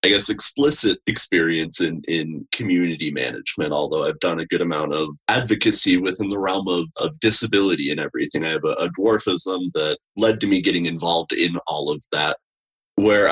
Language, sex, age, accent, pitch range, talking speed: English, male, 30-49, American, 85-110 Hz, 180 wpm